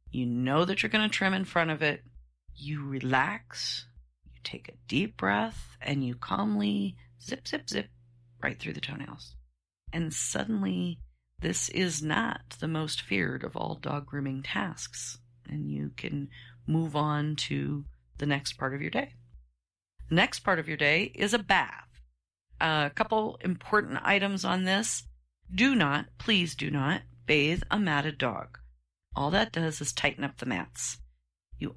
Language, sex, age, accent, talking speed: English, female, 40-59, American, 160 wpm